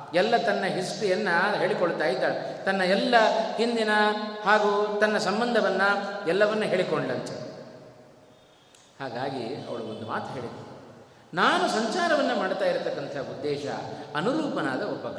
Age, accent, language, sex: 30-49, native, Kannada, male